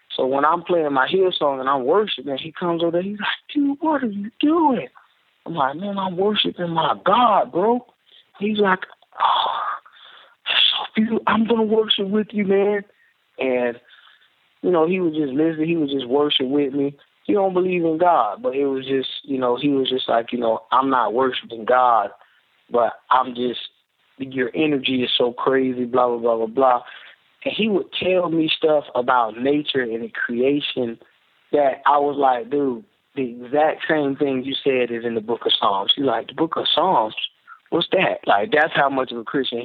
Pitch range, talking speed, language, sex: 130-175 Hz, 195 wpm, English, male